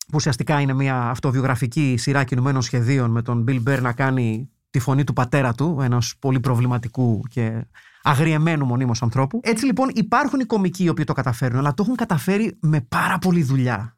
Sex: male